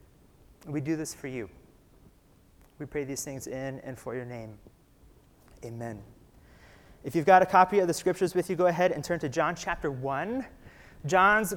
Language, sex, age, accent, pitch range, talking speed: English, male, 30-49, American, 145-180 Hz, 175 wpm